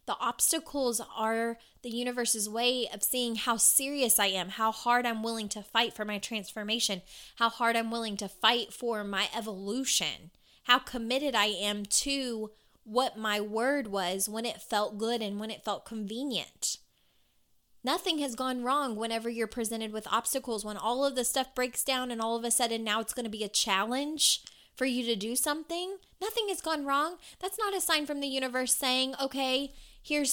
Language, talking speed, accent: English, 185 wpm, American